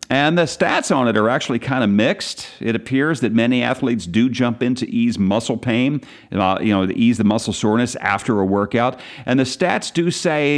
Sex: male